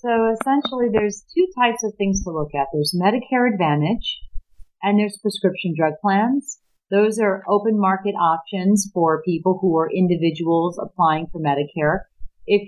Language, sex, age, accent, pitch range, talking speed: English, female, 40-59, American, 165-205 Hz, 150 wpm